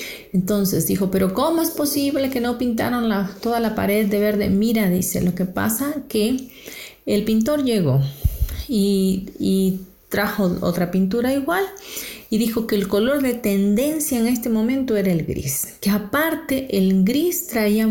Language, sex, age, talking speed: Spanish, female, 40-59, 160 wpm